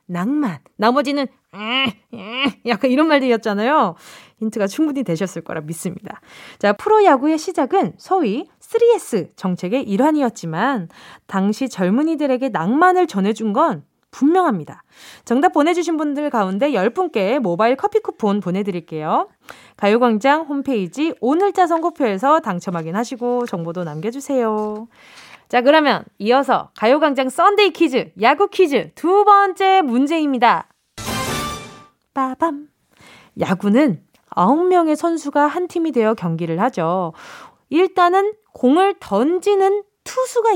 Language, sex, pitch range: Korean, female, 215-345 Hz